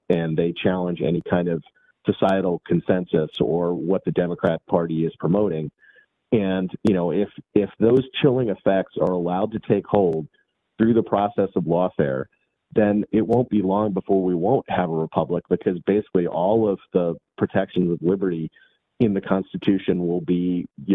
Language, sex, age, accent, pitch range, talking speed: English, male, 40-59, American, 90-105 Hz, 165 wpm